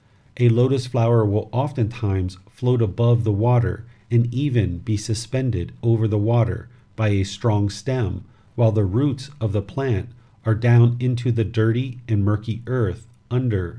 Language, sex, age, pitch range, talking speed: English, male, 40-59, 105-120 Hz, 150 wpm